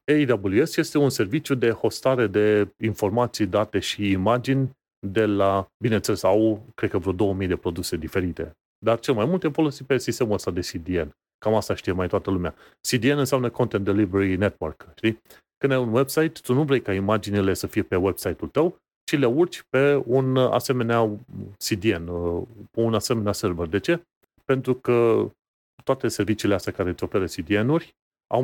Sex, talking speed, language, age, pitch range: male, 170 wpm, Romanian, 30-49, 100-130 Hz